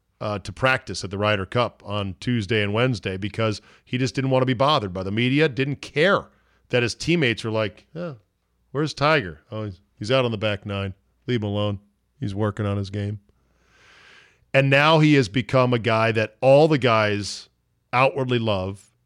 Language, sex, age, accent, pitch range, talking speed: English, male, 40-59, American, 105-140 Hz, 190 wpm